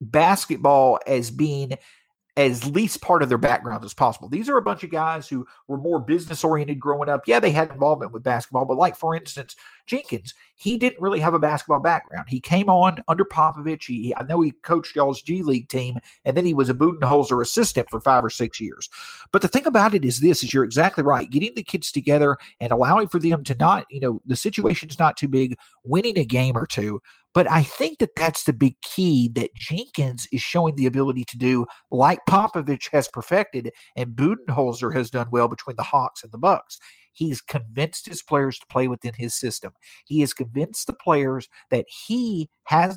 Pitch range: 130-175 Hz